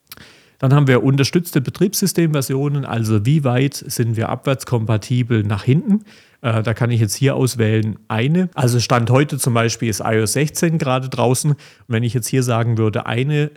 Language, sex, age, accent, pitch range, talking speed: German, male, 40-59, German, 110-135 Hz, 170 wpm